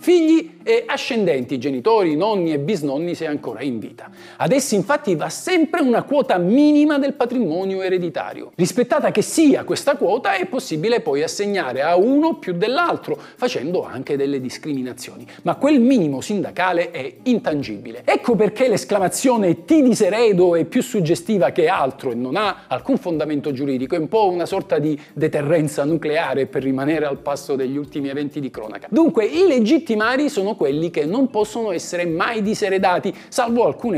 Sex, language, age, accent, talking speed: male, Italian, 50-69, native, 160 wpm